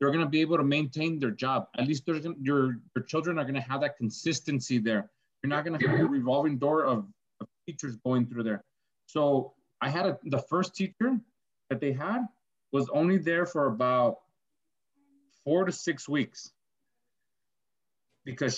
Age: 30-49